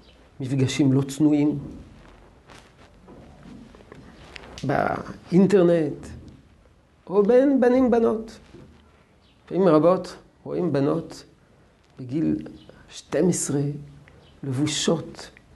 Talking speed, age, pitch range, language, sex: 55 wpm, 50-69, 150-215 Hz, Hebrew, male